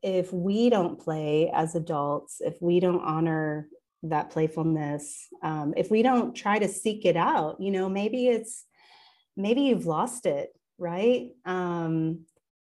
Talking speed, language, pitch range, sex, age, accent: 145 wpm, English, 160-200 Hz, female, 30-49, American